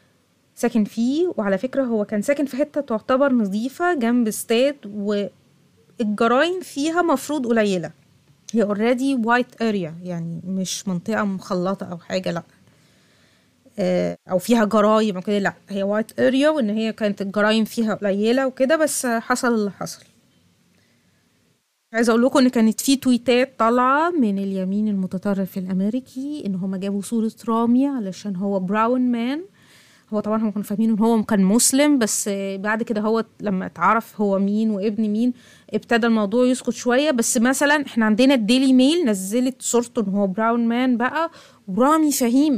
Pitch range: 200-250 Hz